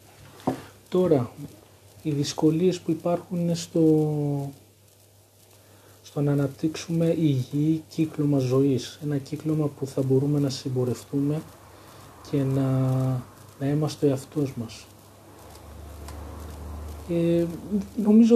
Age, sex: 40-59, male